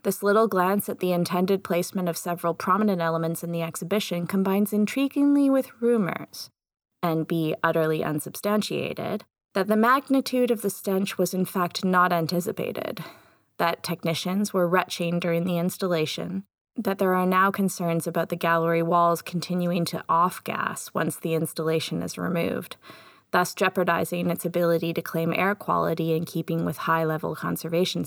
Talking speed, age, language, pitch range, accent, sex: 150 wpm, 20-39, English, 170-200 Hz, American, female